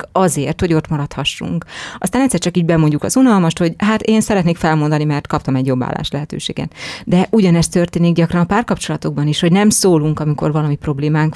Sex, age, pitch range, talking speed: female, 30-49, 155-190 Hz, 185 wpm